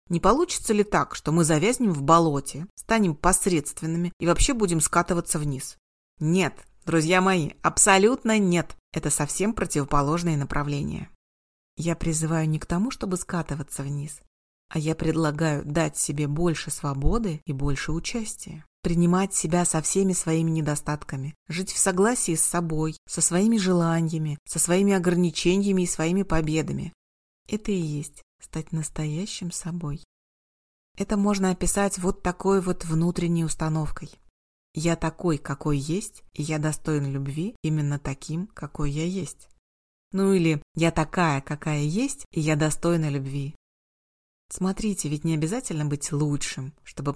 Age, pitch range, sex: 30-49, 145-180 Hz, female